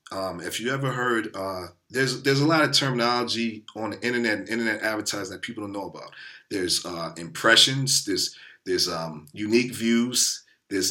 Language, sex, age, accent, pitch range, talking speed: English, male, 40-59, American, 105-135 Hz, 175 wpm